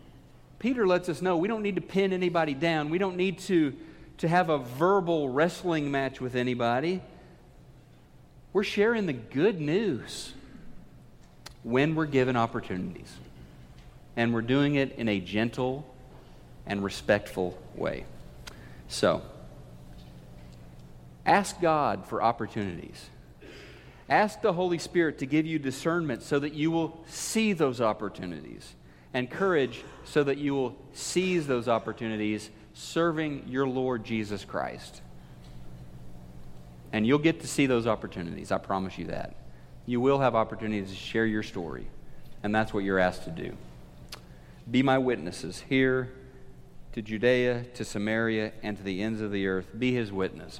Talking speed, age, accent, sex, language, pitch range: 140 wpm, 50-69, American, male, English, 100-150 Hz